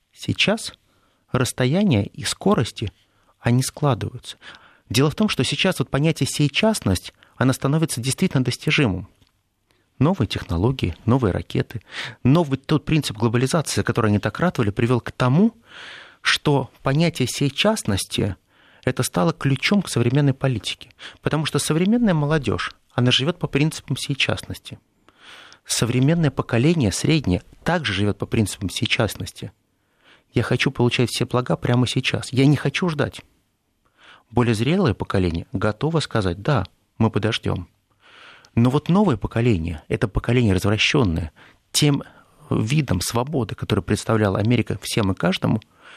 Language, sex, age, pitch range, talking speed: Russian, male, 30-49, 105-140 Hz, 125 wpm